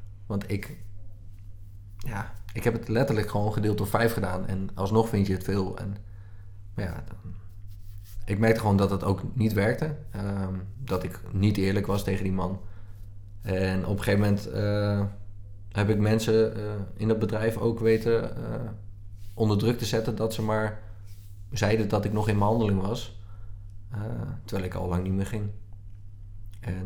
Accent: Dutch